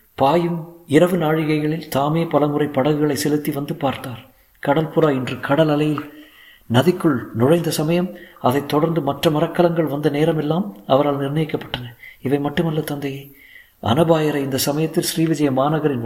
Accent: native